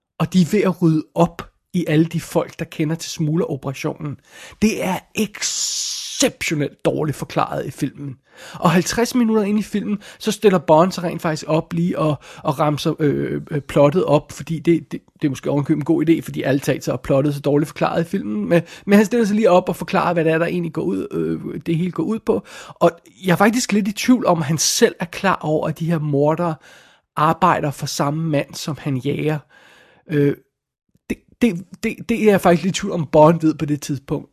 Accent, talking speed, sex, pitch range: native, 220 wpm, male, 150-185 Hz